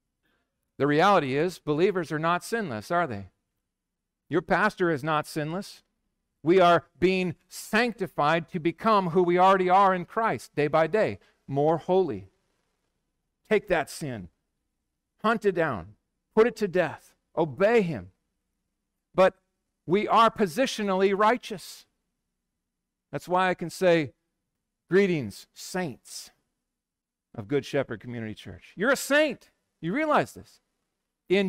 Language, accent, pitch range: English, American, 120-185 Hz